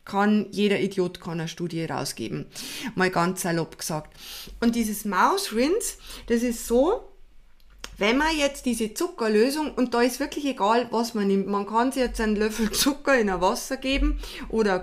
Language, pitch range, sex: German, 220-285 Hz, female